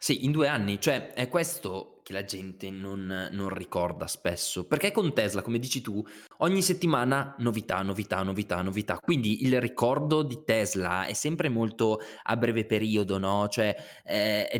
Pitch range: 105-145 Hz